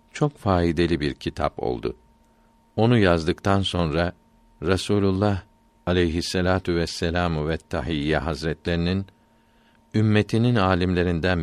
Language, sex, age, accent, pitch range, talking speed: Turkish, male, 50-69, native, 85-115 Hz, 85 wpm